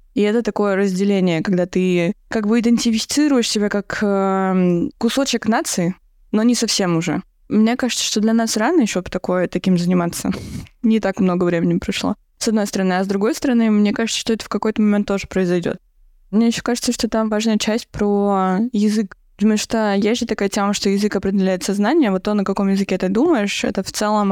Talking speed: 190 wpm